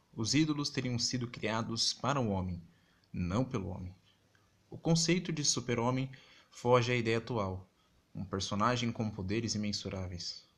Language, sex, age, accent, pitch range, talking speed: Portuguese, male, 20-39, Brazilian, 105-135 Hz, 135 wpm